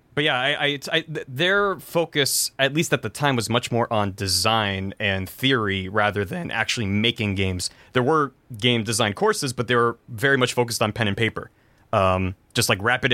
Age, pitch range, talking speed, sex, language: 20-39, 110-145 Hz, 190 wpm, male, English